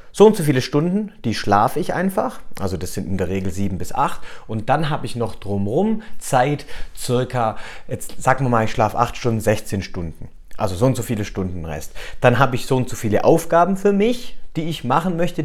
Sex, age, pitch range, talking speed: male, 30-49, 110-155 Hz, 220 wpm